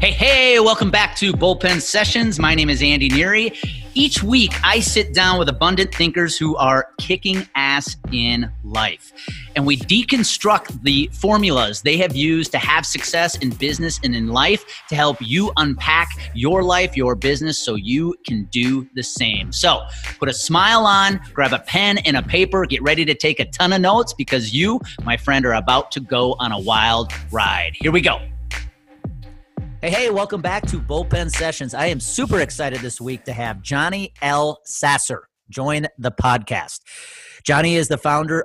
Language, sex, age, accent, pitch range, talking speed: English, male, 30-49, American, 120-165 Hz, 180 wpm